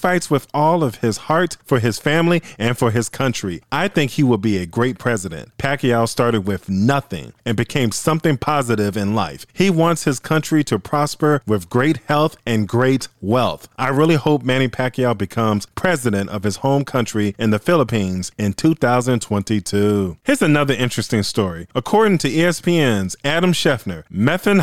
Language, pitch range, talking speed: English, 110-150 Hz, 170 wpm